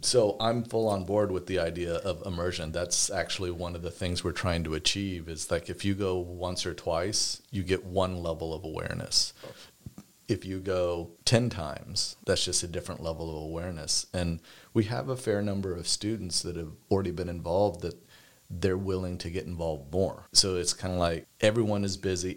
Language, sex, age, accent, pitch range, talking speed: English, male, 40-59, American, 85-100 Hz, 200 wpm